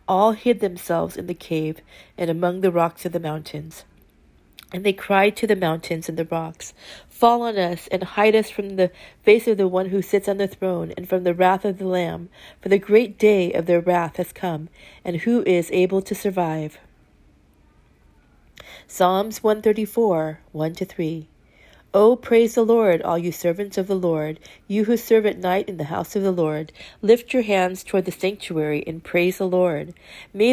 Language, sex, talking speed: English, female, 195 wpm